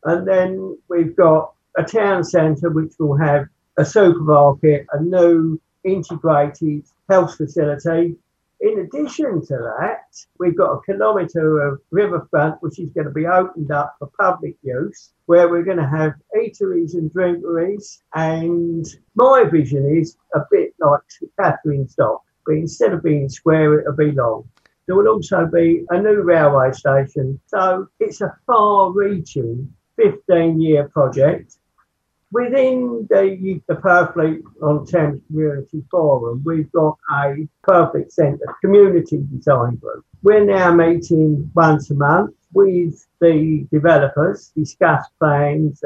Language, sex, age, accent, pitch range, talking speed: English, male, 60-79, British, 150-185 Hz, 135 wpm